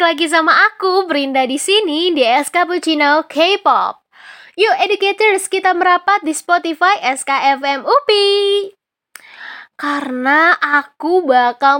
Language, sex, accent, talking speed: Indonesian, female, native, 100 wpm